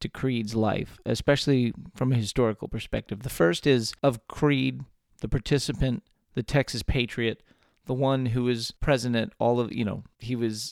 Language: English